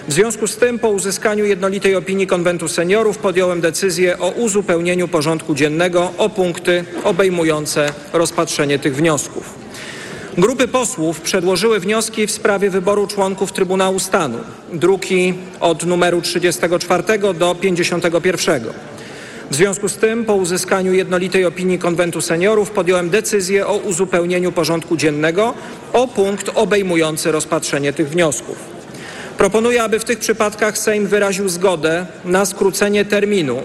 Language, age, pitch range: Polish, 40-59, 170-205 Hz